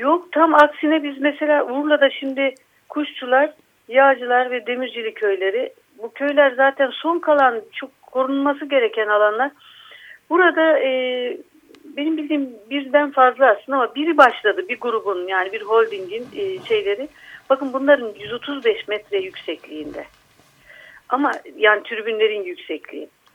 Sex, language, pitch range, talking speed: female, Turkish, 235-315 Hz, 120 wpm